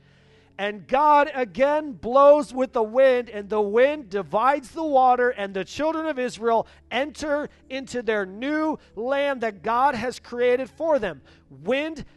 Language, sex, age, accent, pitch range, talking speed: English, male, 40-59, American, 185-275 Hz, 150 wpm